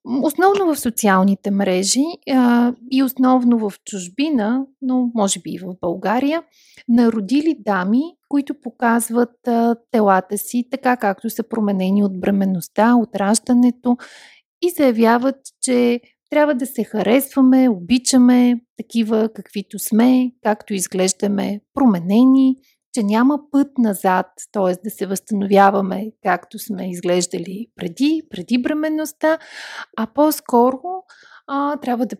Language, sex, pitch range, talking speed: Bulgarian, female, 205-265 Hz, 110 wpm